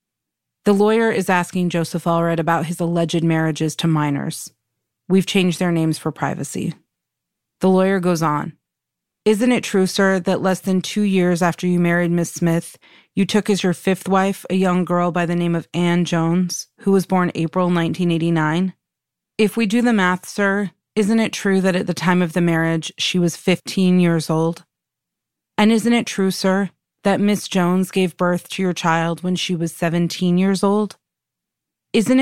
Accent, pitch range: American, 170-195 Hz